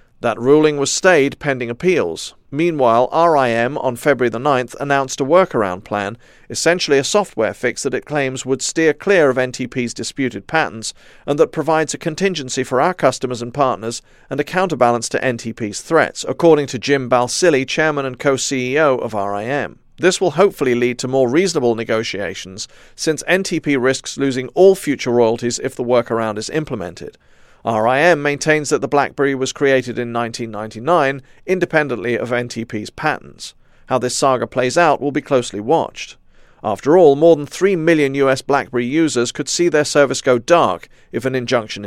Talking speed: 165 wpm